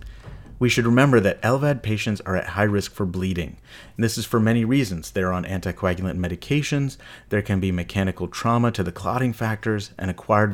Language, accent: English, American